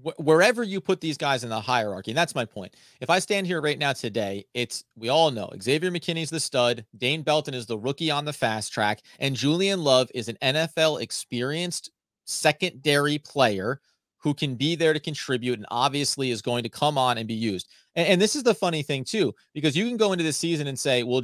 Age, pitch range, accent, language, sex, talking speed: 30-49, 130-170 Hz, American, English, male, 220 wpm